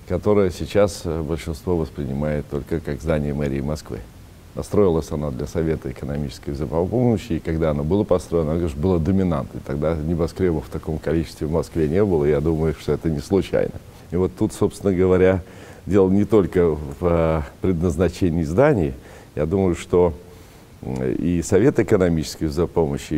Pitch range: 75-95 Hz